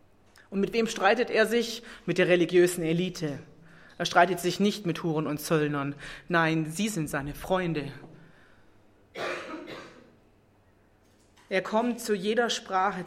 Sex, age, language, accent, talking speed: female, 30-49, English, German, 130 wpm